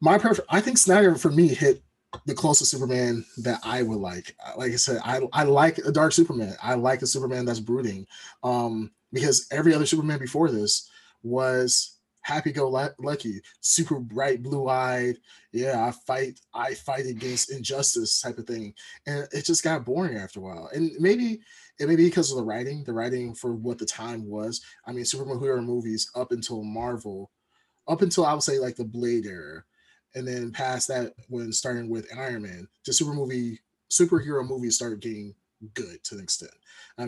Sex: male